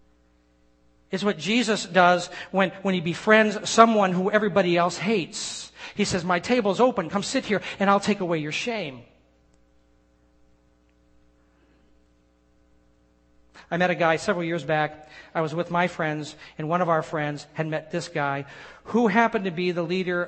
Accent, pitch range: American, 125-185 Hz